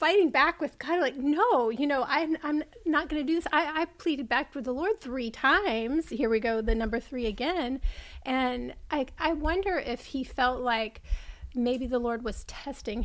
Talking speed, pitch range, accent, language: 200 wpm, 230-285 Hz, American, English